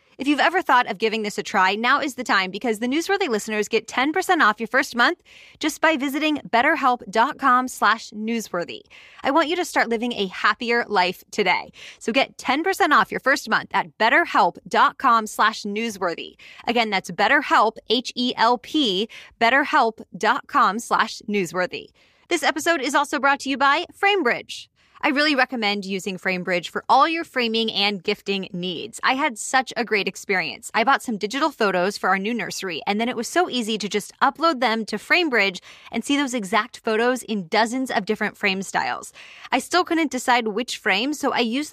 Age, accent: 20-39, American